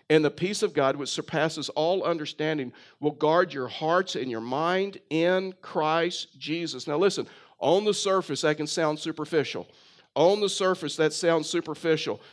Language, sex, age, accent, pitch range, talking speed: English, male, 50-69, American, 155-190 Hz, 165 wpm